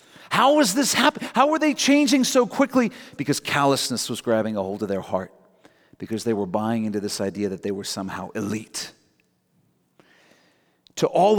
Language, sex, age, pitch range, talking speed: English, male, 40-59, 120-165 Hz, 175 wpm